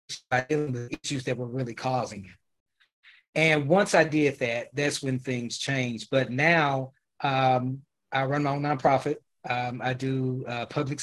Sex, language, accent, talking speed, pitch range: male, English, American, 175 wpm, 130-155 Hz